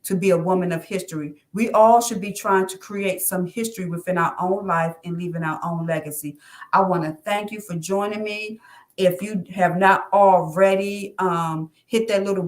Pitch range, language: 175-200 Hz, English